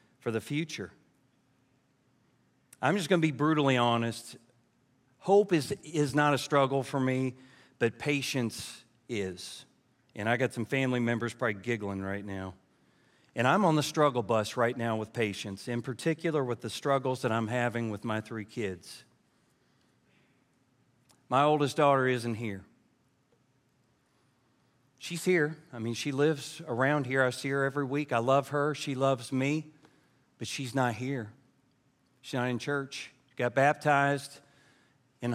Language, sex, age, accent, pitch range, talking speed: English, male, 40-59, American, 120-140 Hz, 150 wpm